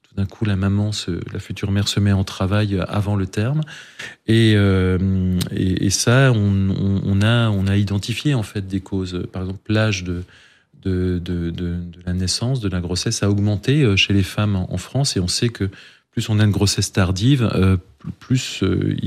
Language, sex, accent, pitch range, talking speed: French, male, French, 95-105 Hz, 200 wpm